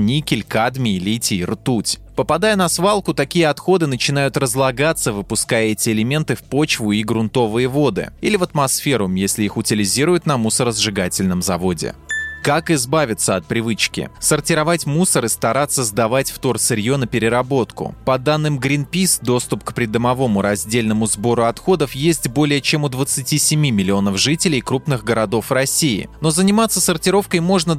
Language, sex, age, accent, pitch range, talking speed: Russian, male, 20-39, native, 110-155 Hz, 140 wpm